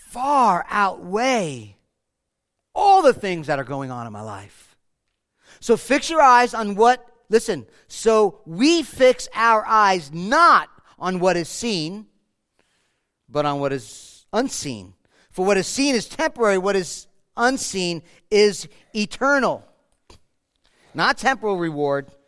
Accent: American